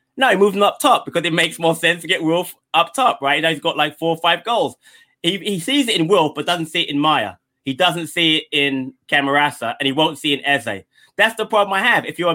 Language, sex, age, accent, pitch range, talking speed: English, male, 20-39, British, 130-165 Hz, 275 wpm